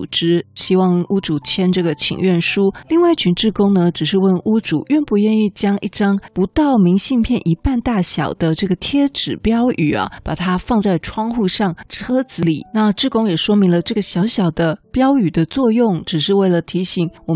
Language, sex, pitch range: Chinese, female, 170-225 Hz